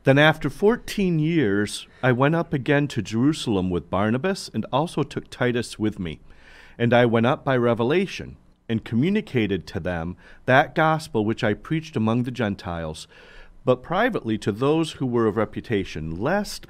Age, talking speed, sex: 40-59, 160 wpm, male